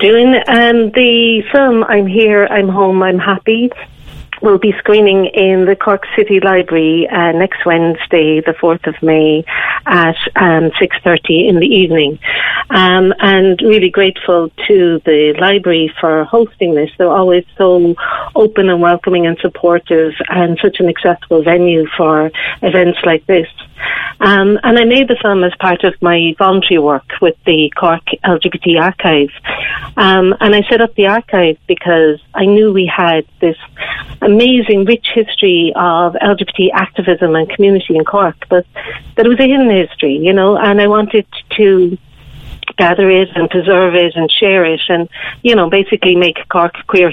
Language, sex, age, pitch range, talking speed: English, female, 50-69, 170-205 Hz, 160 wpm